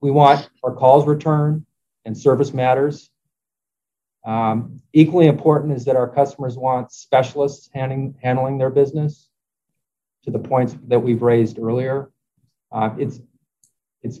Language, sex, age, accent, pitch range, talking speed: English, male, 40-59, American, 115-140 Hz, 130 wpm